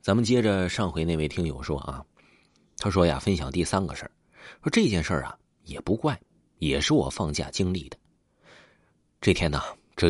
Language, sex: Chinese, male